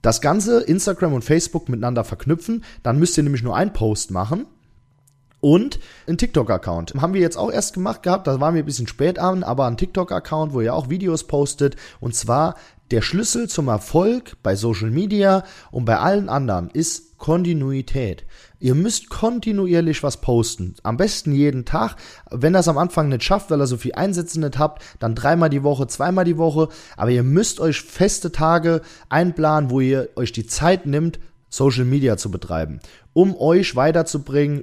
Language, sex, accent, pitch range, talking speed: German, male, German, 125-165 Hz, 180 wpm